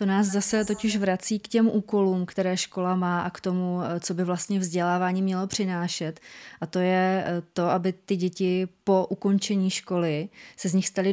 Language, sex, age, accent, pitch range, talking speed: Czech, female, 30-49, native, 180-200 Hz, 185 wpm